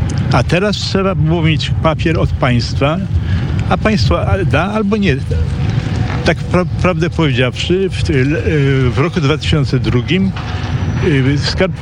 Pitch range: 110-150 Hz